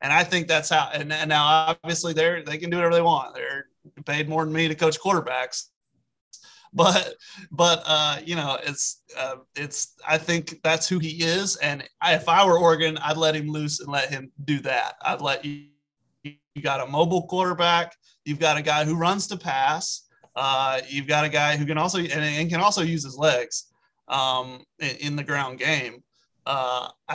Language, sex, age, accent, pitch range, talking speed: English, male, 30-49, American, 145-170 Hz, 200 wpm